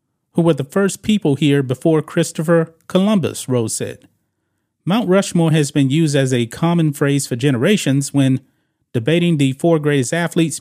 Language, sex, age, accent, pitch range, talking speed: English, male, 30-49, American, 130-165 Hz, 160 wpm